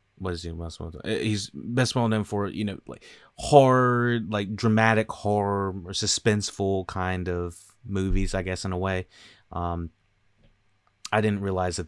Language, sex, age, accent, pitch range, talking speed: English, male, 30-49, American, 90-115 Hz, 160 wpm